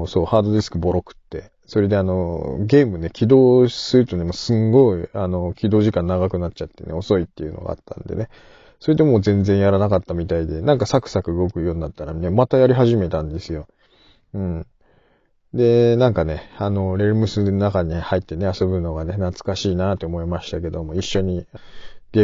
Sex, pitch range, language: male, 85-105 Hz, Japanese